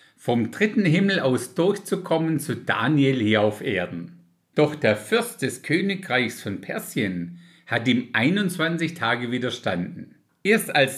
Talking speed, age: 130 wpm, 50-69